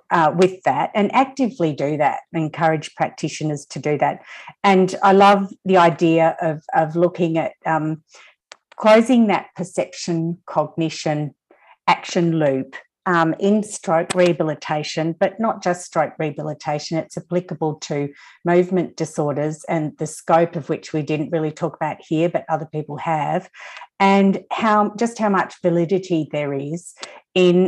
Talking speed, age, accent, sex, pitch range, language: 145 wpm, 50-69, Australian, female, 155-190 Hz, English